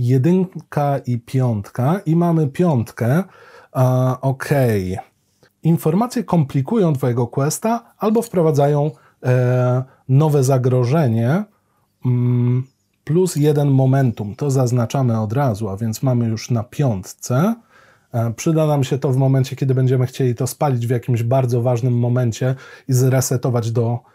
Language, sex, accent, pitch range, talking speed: Polish, male, native, 120-160 Hz, 115 wpm